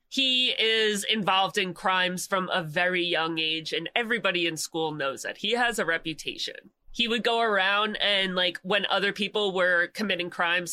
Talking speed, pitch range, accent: 180 wpm, 165-220 Hz, American